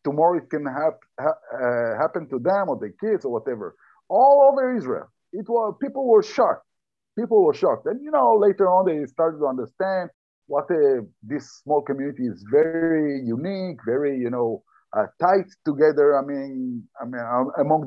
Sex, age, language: male, 50-69, English